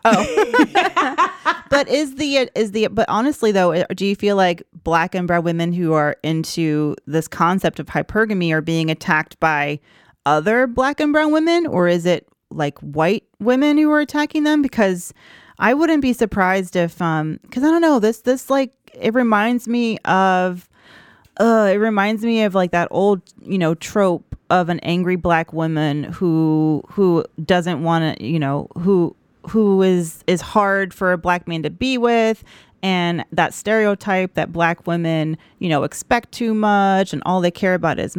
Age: 30-49